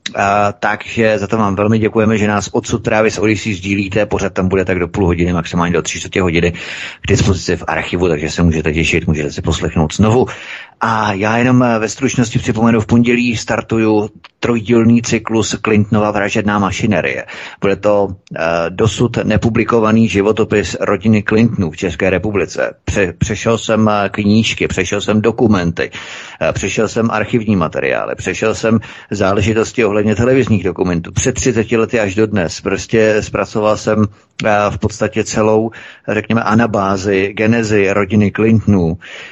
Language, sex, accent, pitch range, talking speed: Czech, male, native, 95-110 Hz, 150 wpm